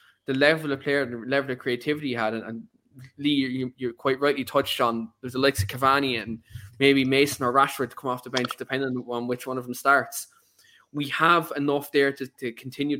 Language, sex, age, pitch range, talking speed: English, male, 20-39, 125-140 Hz, 230 wpm